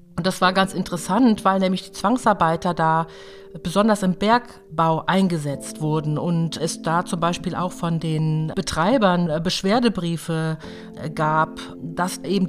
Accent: German